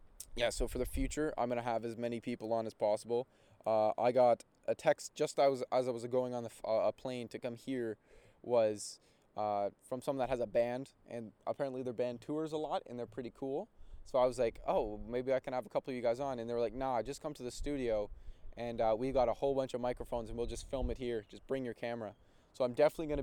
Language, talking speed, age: English, 255 wpm, 20-39